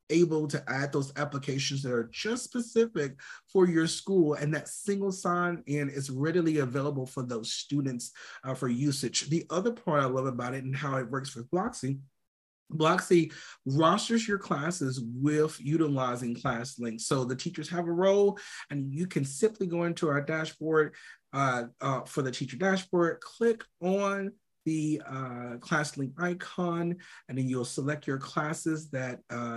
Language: English